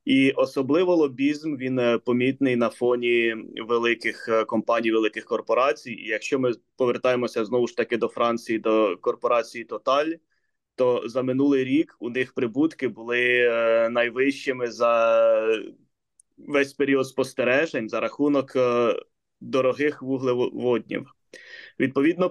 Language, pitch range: Ukrainian, 125-145 Hz